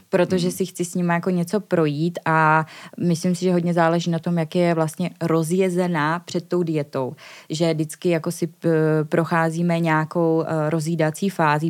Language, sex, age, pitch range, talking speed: Czech, female, 20-39, 160-180 Hz, 160 wpm